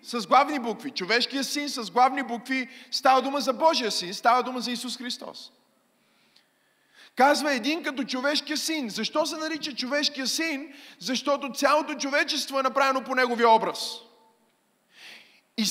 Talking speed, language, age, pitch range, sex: 140 wpm, Bulgarian, 30-49, 220-280 Hz, male